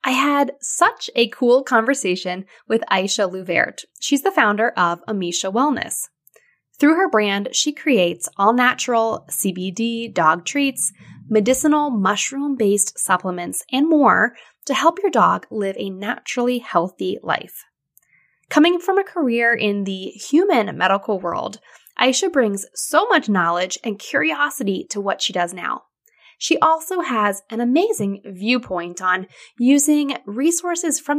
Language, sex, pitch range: English, female, 200-305 Hz